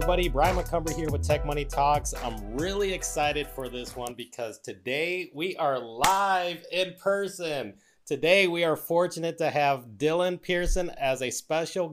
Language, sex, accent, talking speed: English, male, American, 160 wpm